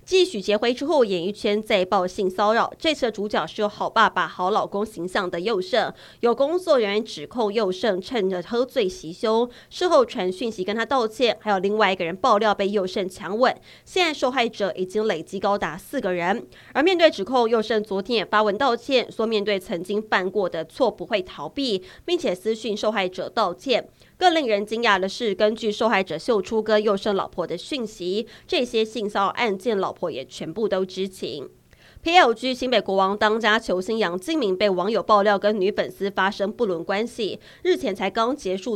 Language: Chinese